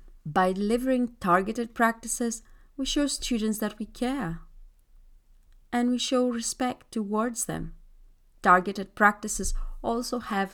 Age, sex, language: 30-49, female, English